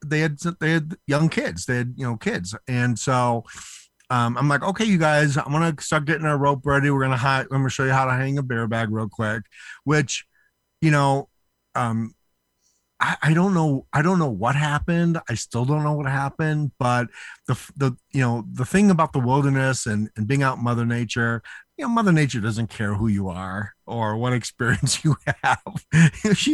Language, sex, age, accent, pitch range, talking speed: English, male, 50-69, American, 110-150 Hz, 210 wpm